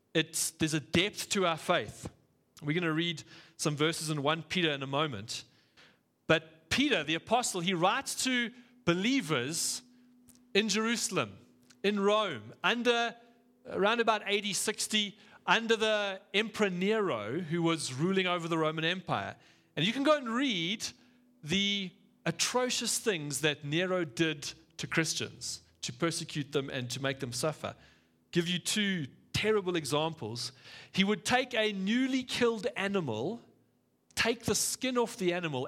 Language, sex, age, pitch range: English, male, 40-59, 140-210 Hz